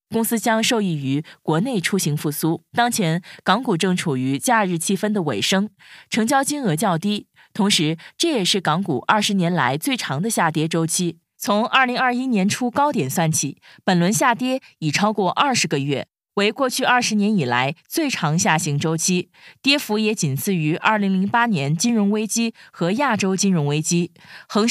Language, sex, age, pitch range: Chinese, female, 20-39, 160-225 Hz